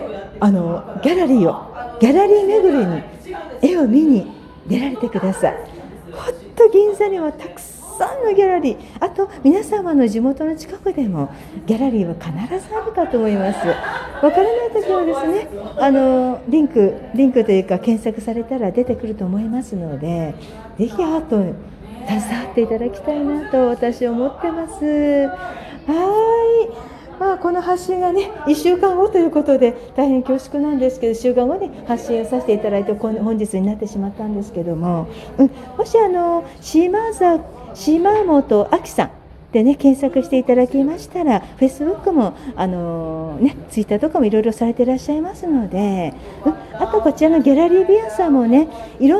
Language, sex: Japanese, female